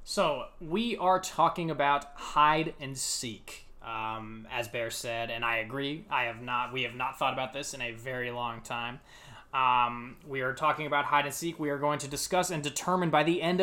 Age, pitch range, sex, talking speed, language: 20-39, 125-165 Hz, male, 205 wpm, English